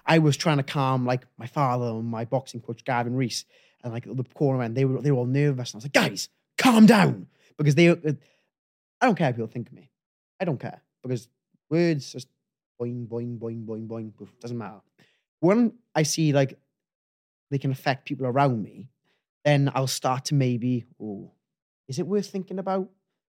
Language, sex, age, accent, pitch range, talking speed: English, male, 20-39, British, 120-160 Hz, 195 wpm